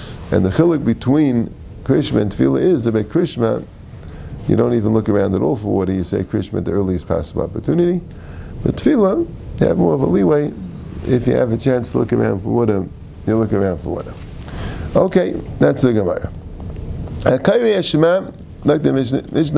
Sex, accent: male, American